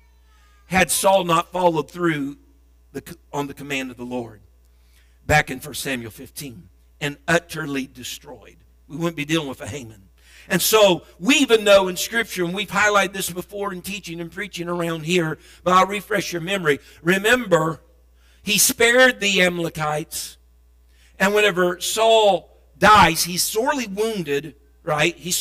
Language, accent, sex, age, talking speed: English, American, male, 50-69, 150 wpm